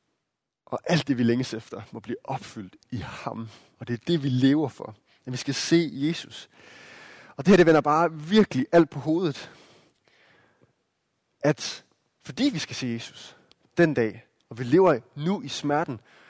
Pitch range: 130-170 Hz